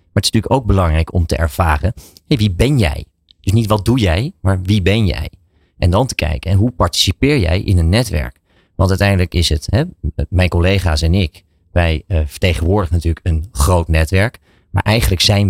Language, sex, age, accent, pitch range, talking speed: Dutch, male, 40-59, Dutch, 85-100 Hz, 200 wpm